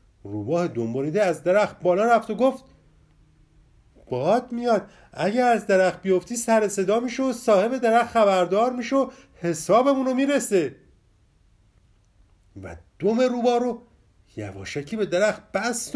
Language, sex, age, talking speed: Persian, male, 50-69, 120 wpm